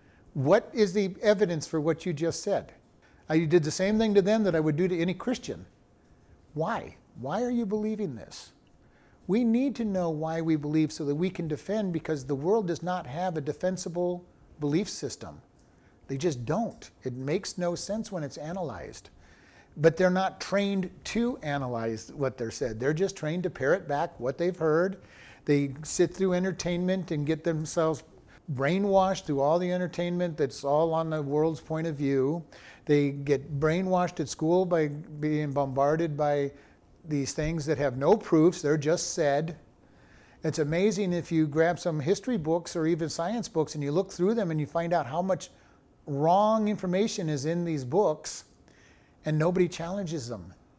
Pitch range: 145-185 Hz